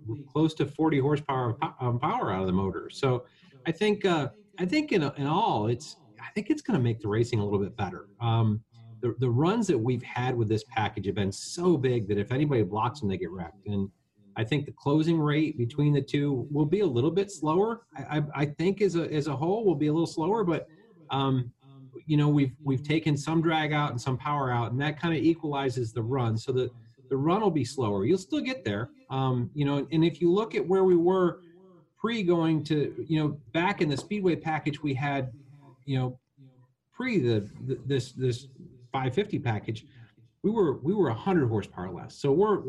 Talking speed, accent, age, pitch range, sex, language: 220 wpm, American, 40-59, 120-160 Hz, male, English